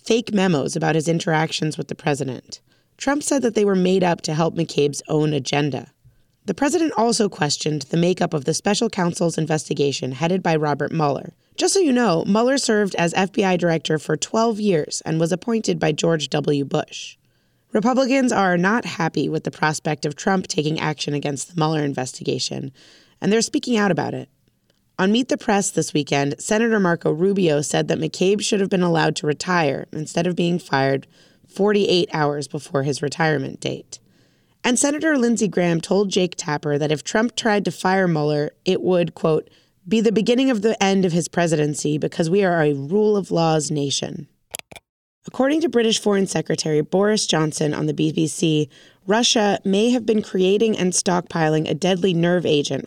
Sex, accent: female, American